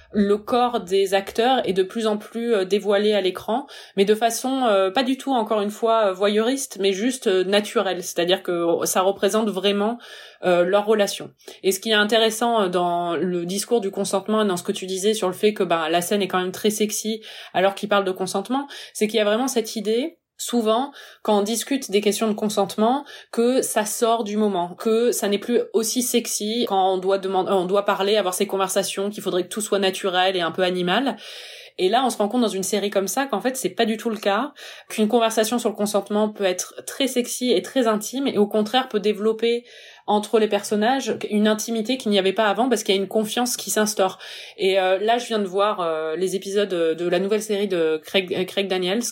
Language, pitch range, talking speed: French, 190-225 Hz, 225 wpm